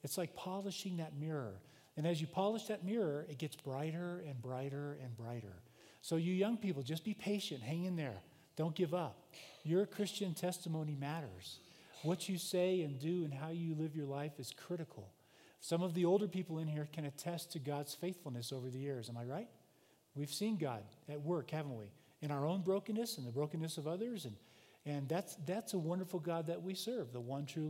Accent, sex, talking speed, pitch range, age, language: American, male, 205 wpm, 145-180 Hz, 40-59, English